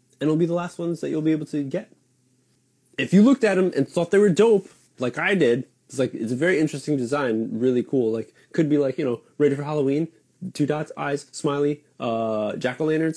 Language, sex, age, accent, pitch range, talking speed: English, male, 20-39, American, 130-180 Hz, 225 wpm